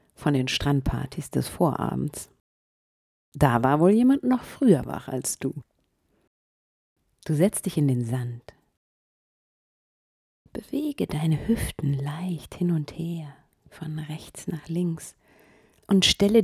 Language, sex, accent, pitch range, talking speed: German, female, German, 130-175 Hz, 120 wpm